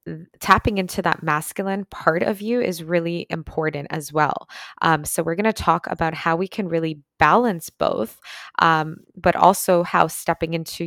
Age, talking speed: 20-39, 170 wpm